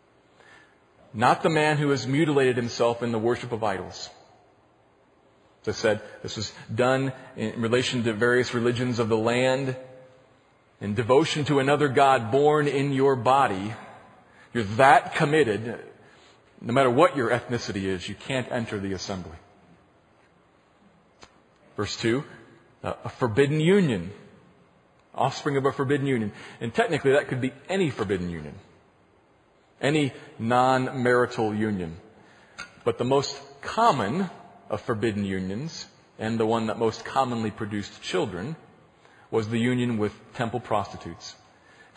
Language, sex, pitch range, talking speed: English, male, 110-140 Hz, 130 wpm